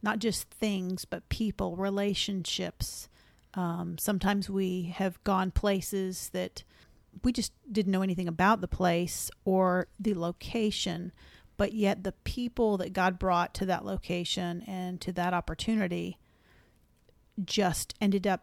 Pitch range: 180-205 Hz